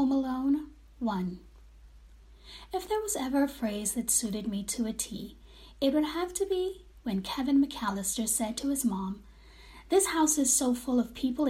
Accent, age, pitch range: American, 30-49, 215-320 Hz